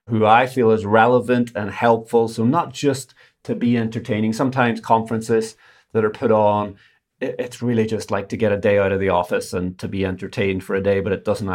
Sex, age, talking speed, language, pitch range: male, 30-49, 215 wpm, English, 100-120 Hz